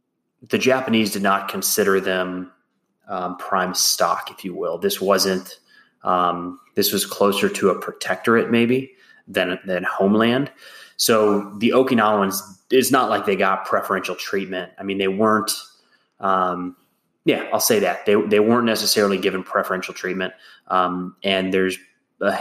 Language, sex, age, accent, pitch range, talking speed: English, male, 20-39, American, 95-105 Hz, 145 wpm